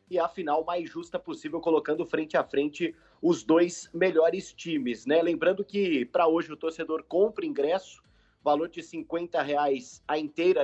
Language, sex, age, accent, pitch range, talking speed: Portuguese, male, 30-49, Brazilian, 155-205 Hz, 165 wpm